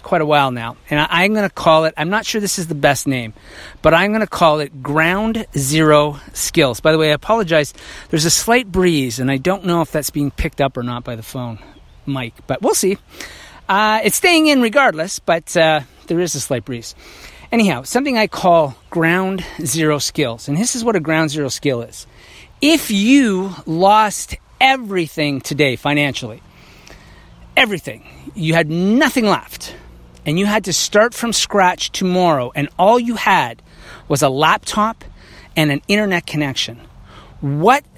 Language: English